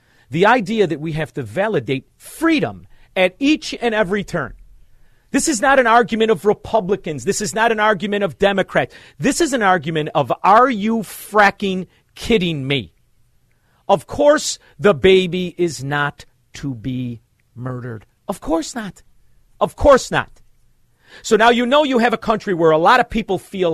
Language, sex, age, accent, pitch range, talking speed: English, male, 40-59, American, 140-235 Hz, 165 wpm